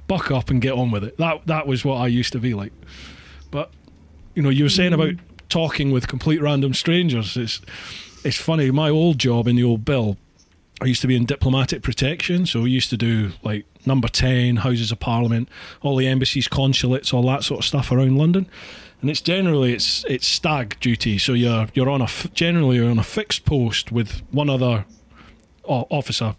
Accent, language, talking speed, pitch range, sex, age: British, English, 200 wpm, 110-150 Hz, male, 30-49